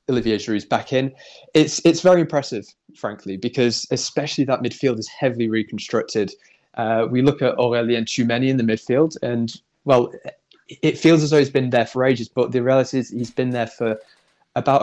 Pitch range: 115-130 Hz